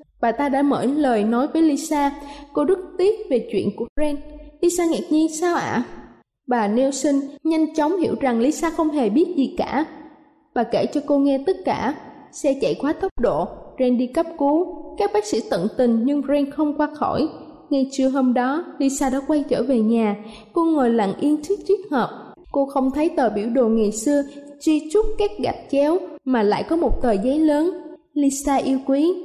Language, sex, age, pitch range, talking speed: Vietnamese, female, 20-39, 255-315 Hz, 205 wpm